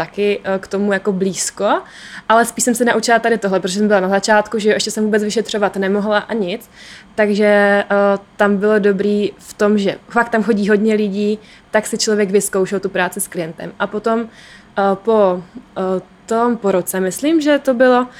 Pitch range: 200-220 Hz